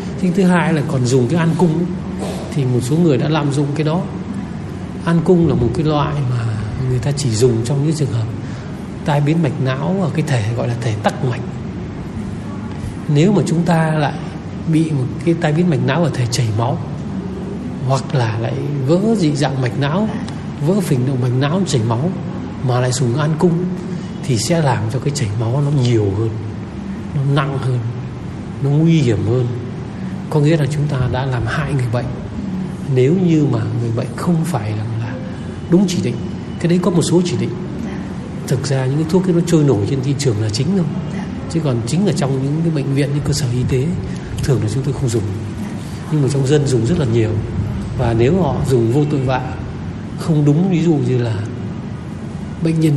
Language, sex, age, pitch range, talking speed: Vietnamese, male, 60-79, 125-165 Hz, 205 wpm